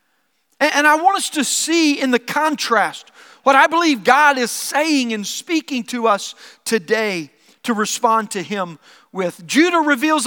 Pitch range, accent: 220-290 Hz, American